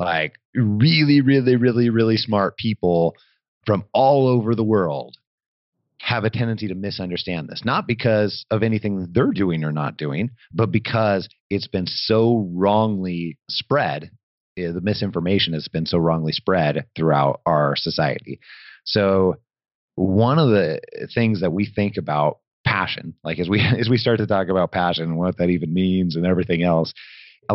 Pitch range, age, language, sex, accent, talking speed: 85-110 Hz, 30-49, English, male, American, 160 wpm